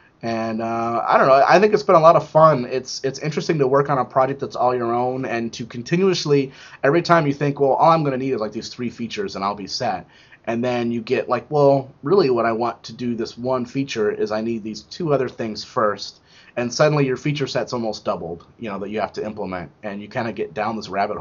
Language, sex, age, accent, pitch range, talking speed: English, male, 30-49, American, 115-145 Hz, 255 wpm